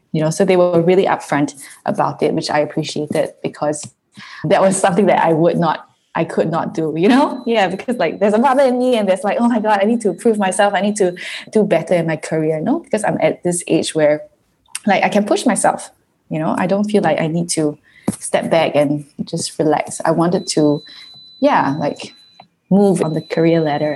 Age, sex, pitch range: 20-39, female, 155-195 Hz